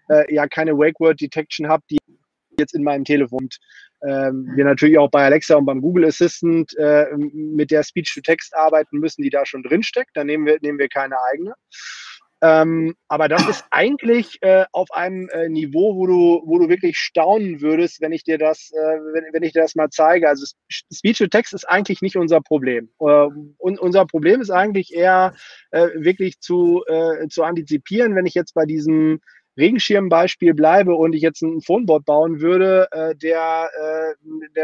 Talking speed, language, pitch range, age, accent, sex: 175 wpm, German, 155-180 Hz, 30-49, German, male